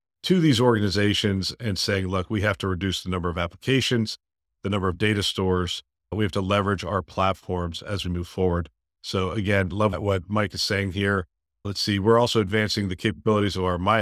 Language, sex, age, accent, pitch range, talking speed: English, male, 50-69, American, 90-110 Hz, 200 wpm